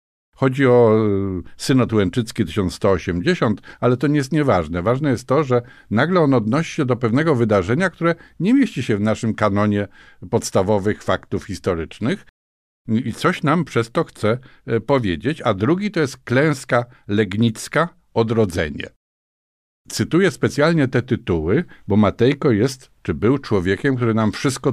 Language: Polish